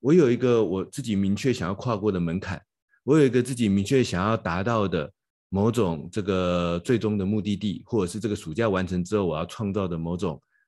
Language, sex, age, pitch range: Chinese, male, 30-49, 90-115 Hz